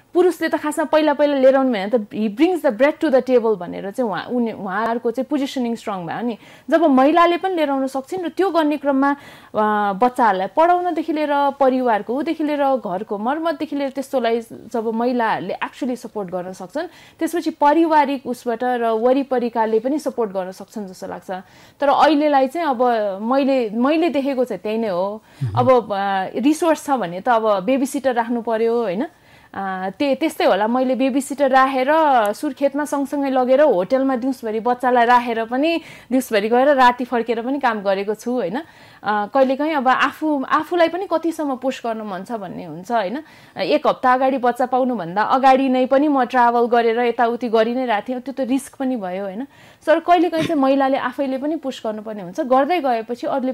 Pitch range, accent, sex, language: 230-285 Hz, Indian, female, English